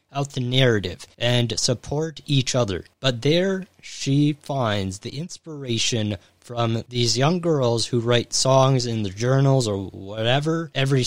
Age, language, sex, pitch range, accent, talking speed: 30-49, English, male, 110-140 Hz, American, 140 wpm